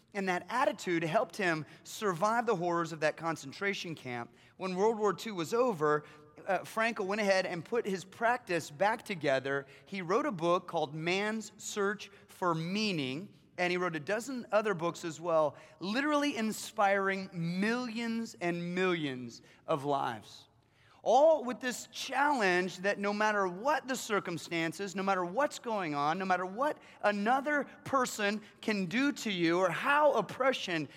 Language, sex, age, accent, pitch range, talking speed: English, male, 30-49, American, 165-230 Hz, 155 wpm